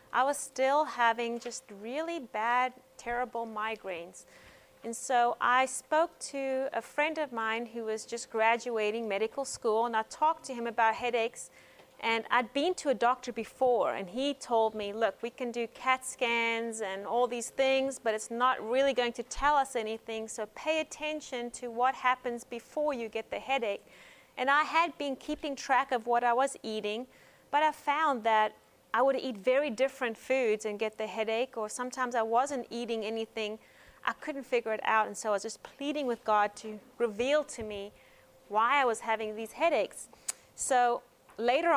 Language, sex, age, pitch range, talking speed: English, female, 30-49, 220-270 Hz, 185 wpm